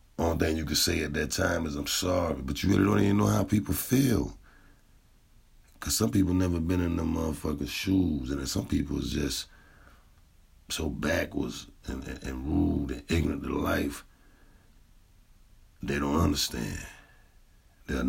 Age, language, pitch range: 50-69, English, 70-90 Hz